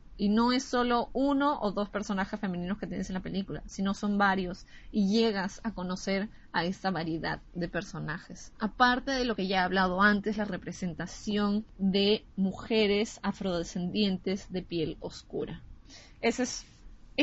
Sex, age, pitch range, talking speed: female, 20-39, 185-225 Hz, 150 wpm